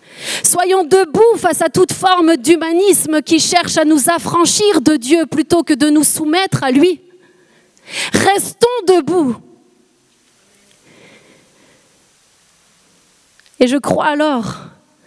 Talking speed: 110 wpm